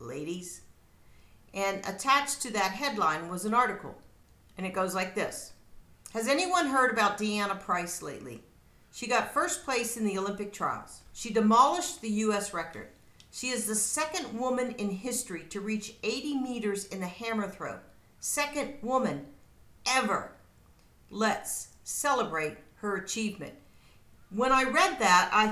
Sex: female